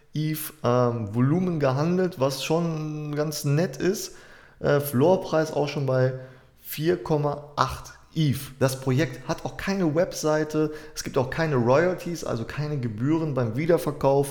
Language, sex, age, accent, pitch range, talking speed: German, male, 20-39, German, 120-150 Hz, 135 wpm